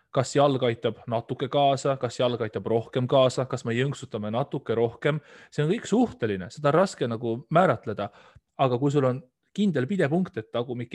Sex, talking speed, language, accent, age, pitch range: male, 175 wpm, English, Finnish, 30-49, 125-160 Hz